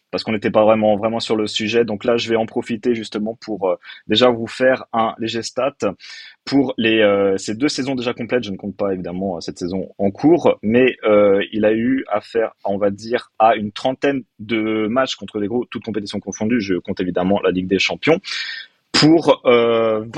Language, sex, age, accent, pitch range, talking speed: French, male, 30-49, French, 105-130 Hz, 210 wpm